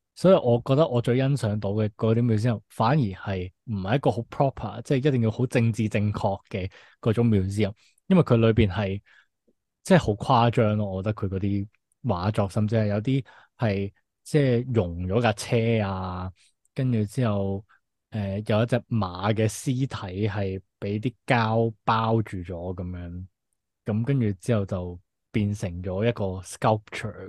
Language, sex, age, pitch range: Chinese, male, 20-39, 100-120 Hz